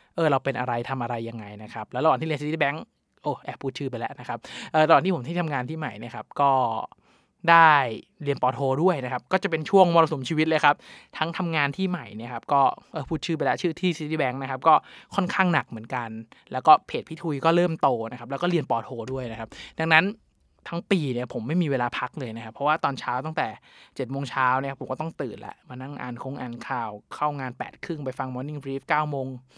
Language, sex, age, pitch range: Thai, male, 20-39, 130-165 Hz